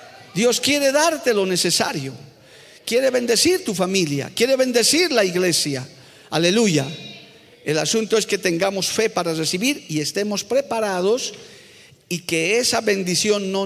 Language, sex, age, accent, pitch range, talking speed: Spanish, male, 50-69, Spanish, 175-240 Hz, 130 wpm